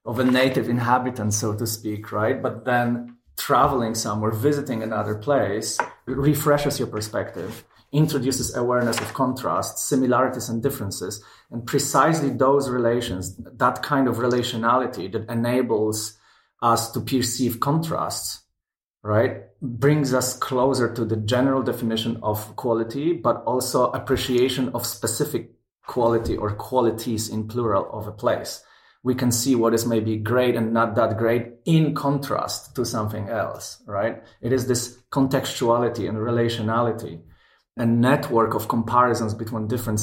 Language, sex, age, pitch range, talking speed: German, male, 30-49, 110-130 Hz, 135 wpm